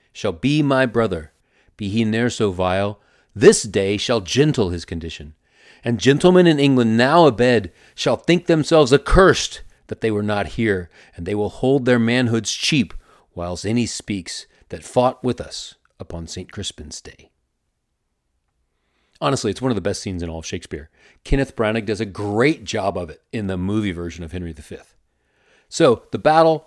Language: English